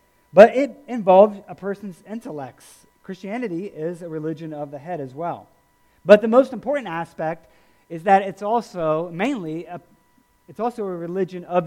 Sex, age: male, 40-59